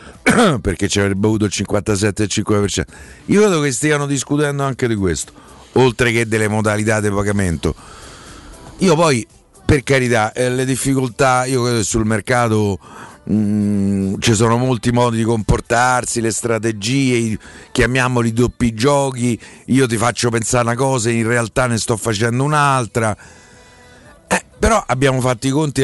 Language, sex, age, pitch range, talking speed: Italian, male, 50-69, 105-130 Hz, 145 wpm